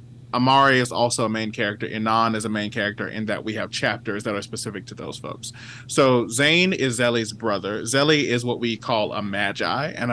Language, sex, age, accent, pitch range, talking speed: English, male, 30-49, American, 110-125 Hz, 210 wpm